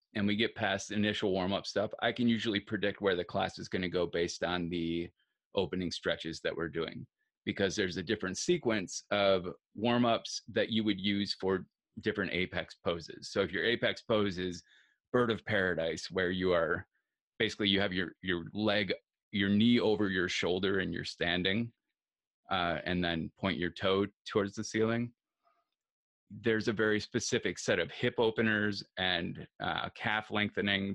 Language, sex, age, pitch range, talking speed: English, male, 30-49, 95-115 Hz, 175 wpm